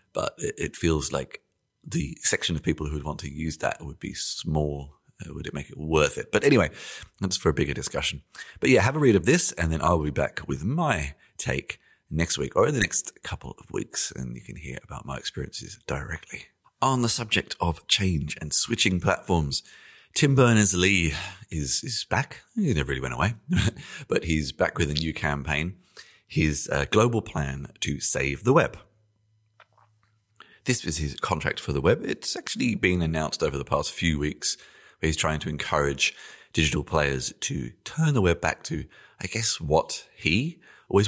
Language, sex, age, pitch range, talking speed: English, male, 30-49, 75-105 Hz, 185 wpm